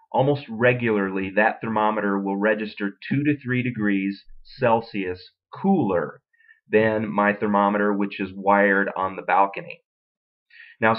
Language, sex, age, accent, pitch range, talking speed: English, male, 30-49, American, 100-130 Hz, 120 wpm